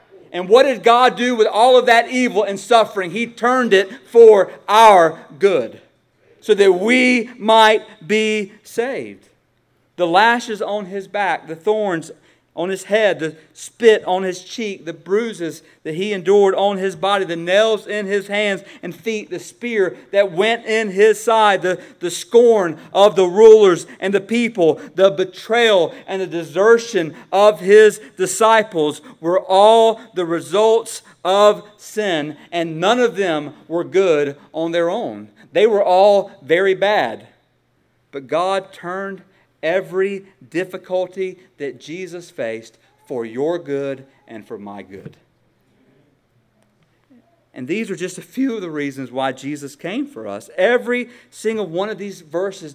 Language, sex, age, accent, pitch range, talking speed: English, male, 40-59, American, 170-215 Hz, 150 wpm